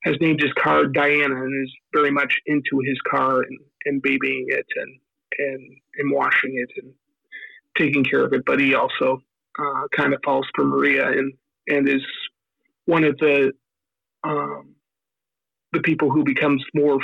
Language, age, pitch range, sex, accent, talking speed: English, 40-59, 135-150 Hz, male, American, 165 wpm